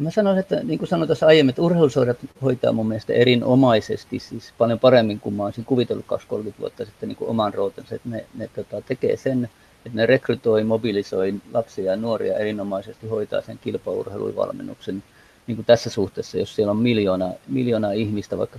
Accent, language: native, Finnish